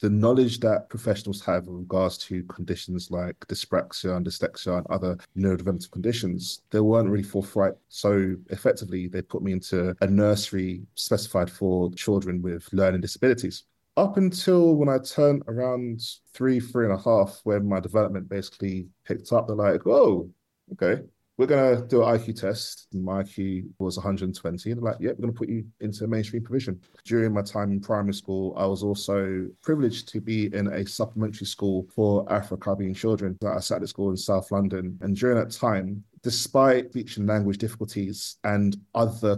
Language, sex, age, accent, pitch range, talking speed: English, male, 20-39, British, 95-110 Hz, 175 wpm